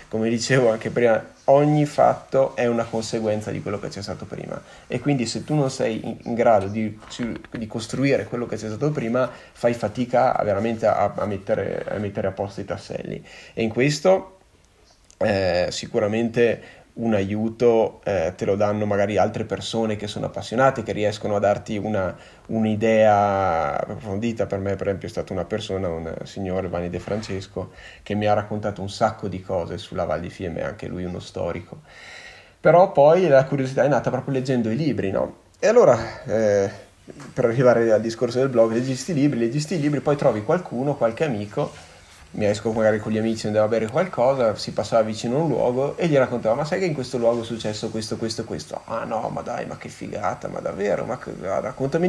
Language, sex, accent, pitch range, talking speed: Italian, male, native, 105-130 Hz, 190 wpm